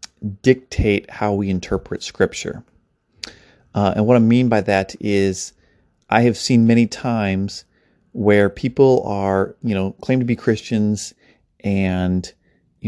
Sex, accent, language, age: male, American, English, 30-49